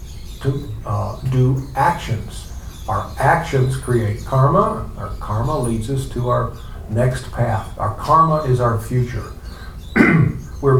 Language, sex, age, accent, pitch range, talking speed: English, male, 60-79, American, 105-140 Hz, 120 wpm